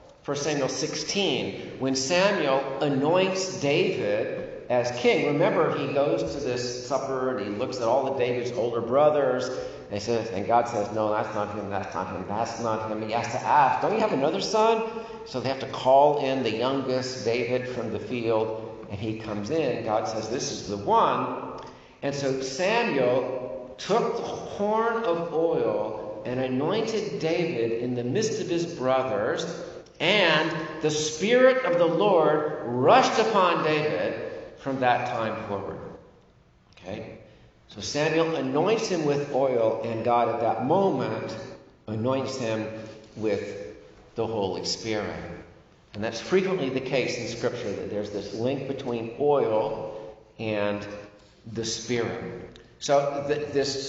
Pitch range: 110-160 Hz